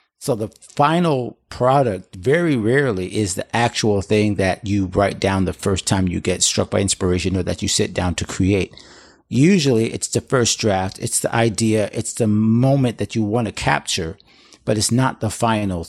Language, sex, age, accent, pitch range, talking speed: English, male, 50-69, American, 100-120 Hz, 190 wpm